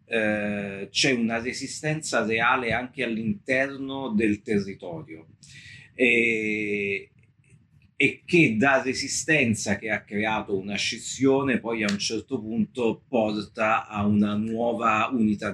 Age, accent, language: 40-59, native, Italian